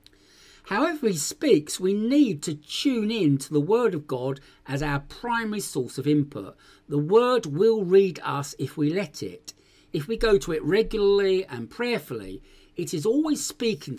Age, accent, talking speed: 50-69, British, 170 wpm